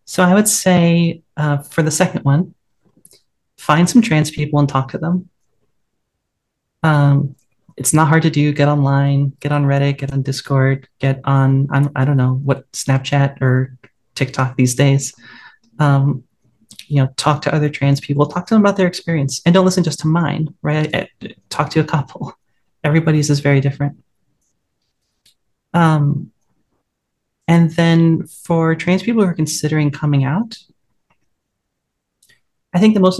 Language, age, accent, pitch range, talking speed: English, 30-49, American, 140-170 Hz, 155 wpm